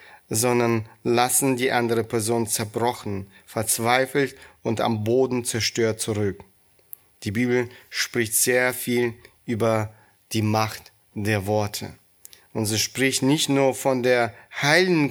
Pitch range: 110-130 Hz